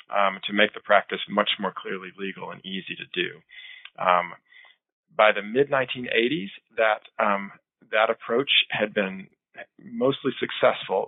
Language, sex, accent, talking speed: English, male, American, 135 wpm